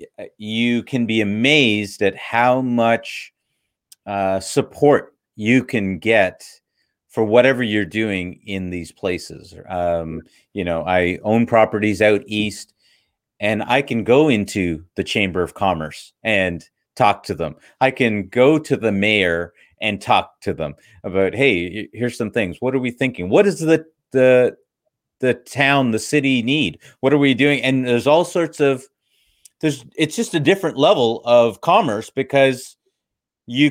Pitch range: 95-130 Hz